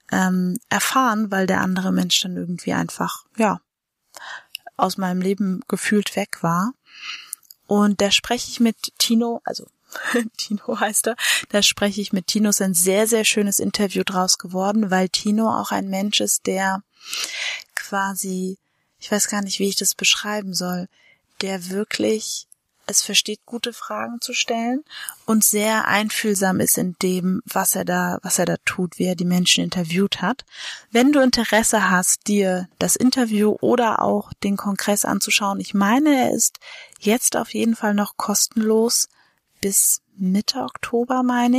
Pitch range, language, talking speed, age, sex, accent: 190-230 Hz, German, 155 wpm, 20-39, female, German